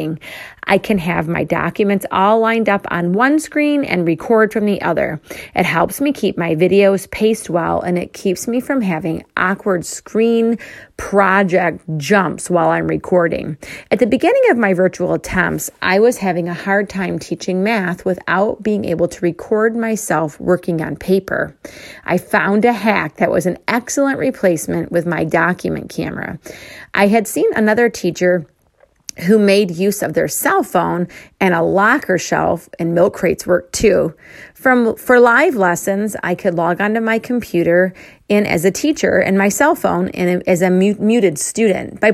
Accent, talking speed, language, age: American, 170 wpm, English, 30-49